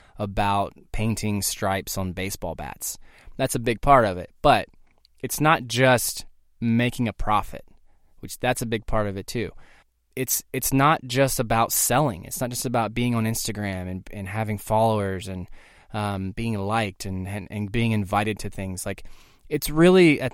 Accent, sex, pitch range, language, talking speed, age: American, male, 105-130 Hz, English, 175 wpm, 20-39